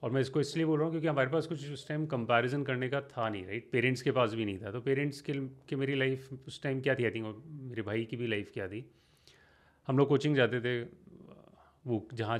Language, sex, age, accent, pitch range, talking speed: Hindi, male, 30-49, native, 115-150 Hz, 255 wpm